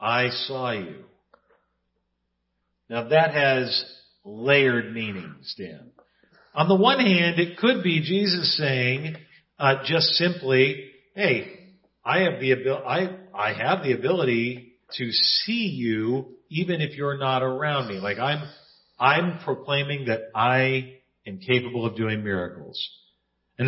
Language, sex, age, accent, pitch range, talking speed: English, male, 50-69, American, 120-160 Hz, 130 wpm